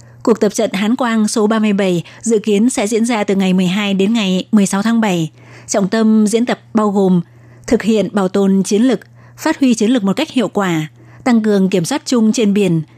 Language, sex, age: Vietnamese, female, 20-39